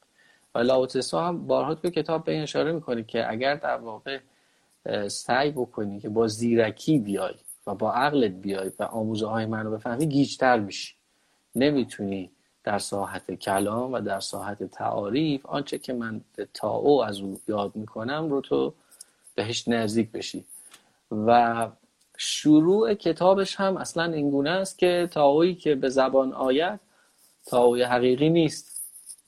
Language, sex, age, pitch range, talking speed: Persian, male, 30-49, 110-140 Hz, 135 wpm